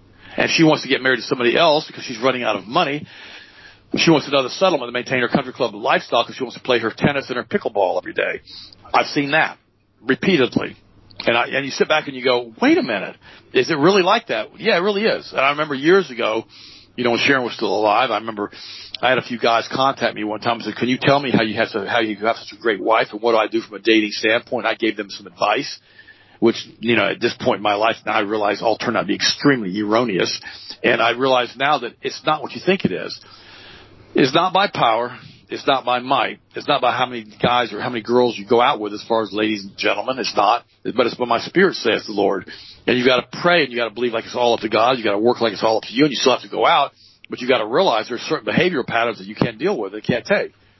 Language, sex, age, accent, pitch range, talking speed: English, male, 40-59, American, 110-135 Hz, 280 wpm